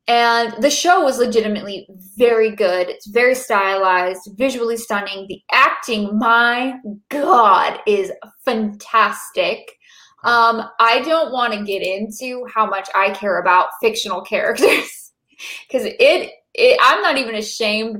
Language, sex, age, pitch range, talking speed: English, female, 10-29, 205-275 Hz, 130 wpm